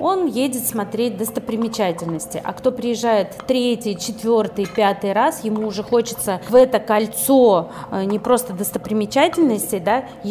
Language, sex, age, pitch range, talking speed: Russian, female, 30-49, 190-235 Hz, 120 wpm